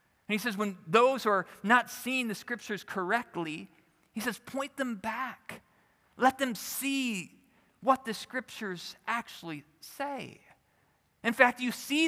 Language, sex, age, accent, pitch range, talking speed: English, male, 40-59, American, 195-255 Hz, 145 wpm